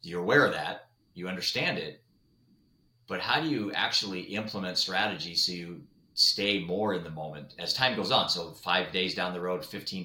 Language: English